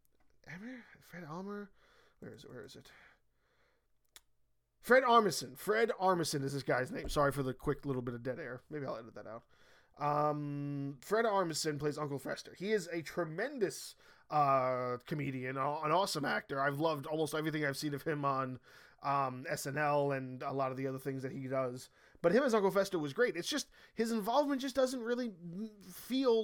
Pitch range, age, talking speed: 140-205 Hz, 20-39, 185 wpm